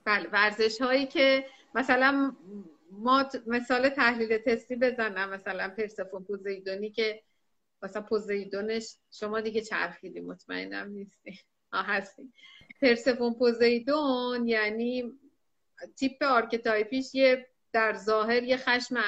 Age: 30-49